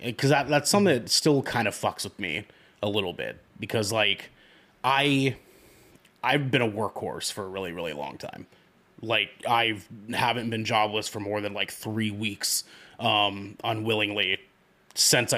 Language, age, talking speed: English, 30-49, 160 wpm